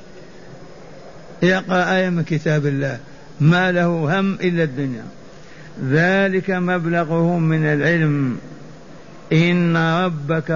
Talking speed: 85 wpm